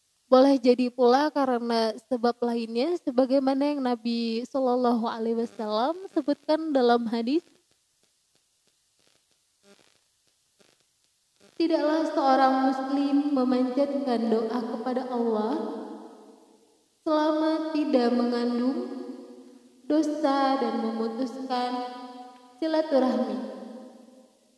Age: 20-39